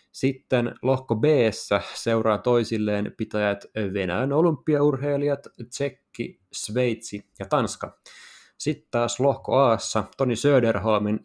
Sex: male